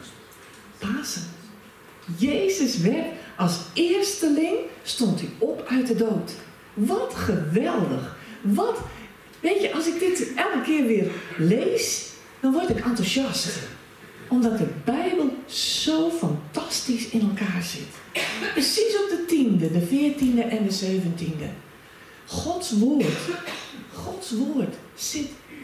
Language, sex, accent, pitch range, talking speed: Dutch, female, Dutch, 195-300 Hz, 115 wpm